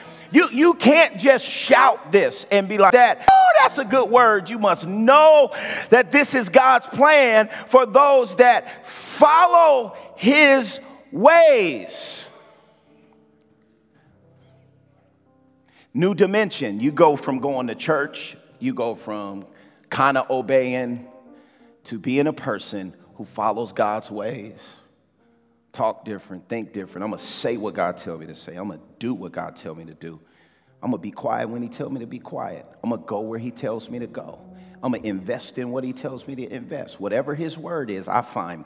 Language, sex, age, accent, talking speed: English, male, 40-59, American, 175 wpm